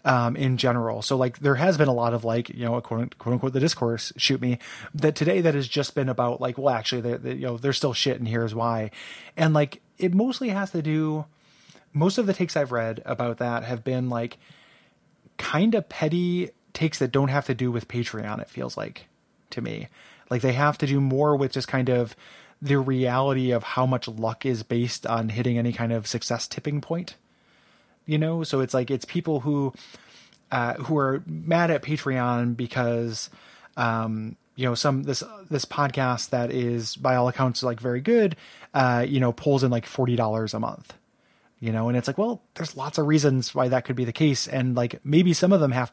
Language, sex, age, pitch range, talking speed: English, male, 20-39, 120-150 Hz, 215 wpm